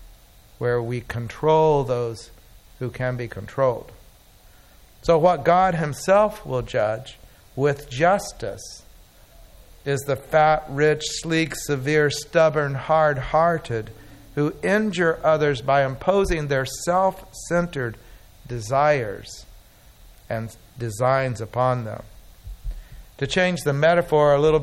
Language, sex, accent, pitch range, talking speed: English, male, American, 115-150 Hz, 100 wpm